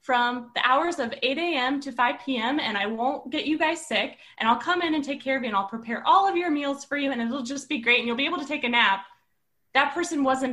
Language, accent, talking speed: English, American, 285 wpm